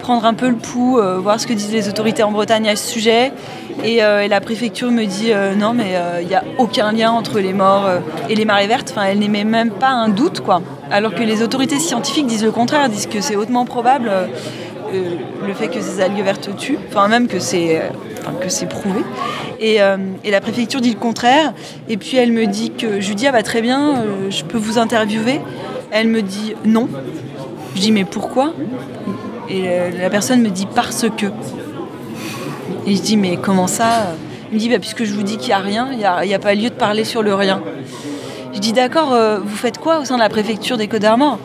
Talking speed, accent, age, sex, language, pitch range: 245 wpm, French, 20-39, female, French, 200-240 Hz